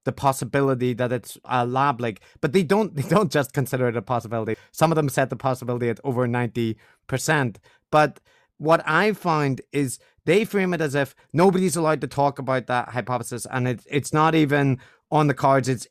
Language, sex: English, male